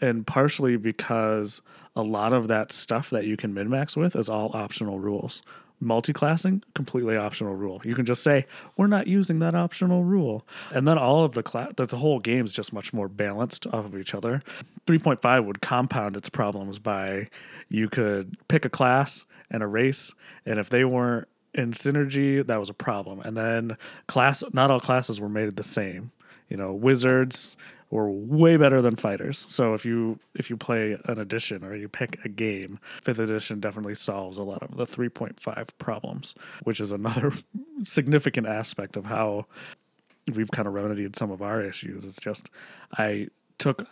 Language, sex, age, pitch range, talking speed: English, male, 30-49, 105-135 Hz, 180 wpm